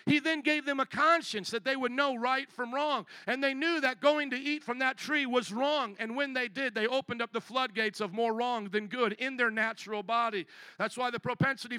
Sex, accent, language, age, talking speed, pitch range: male, American, English, 50-69, 240 wpm, 220-275 Hz